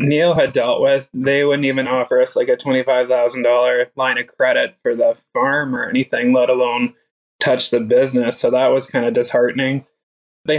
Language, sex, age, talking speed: English, male, 20-39, 180 wpm